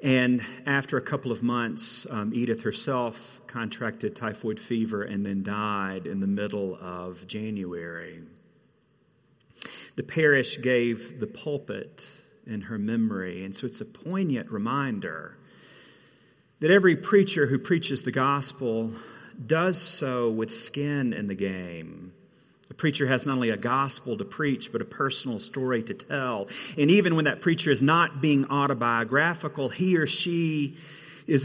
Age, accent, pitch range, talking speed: 40-59, American, 110-145 Hz, 145 wpm